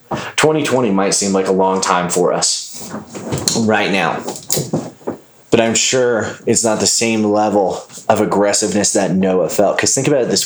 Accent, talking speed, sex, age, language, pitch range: American, 165 wpm, male, 30-49, English, 100-115 Hz